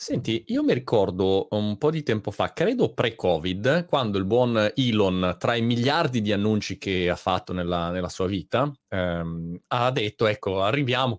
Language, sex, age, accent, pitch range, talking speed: Italian, male, 30-49, native, 100-120 Hz, 170 wpm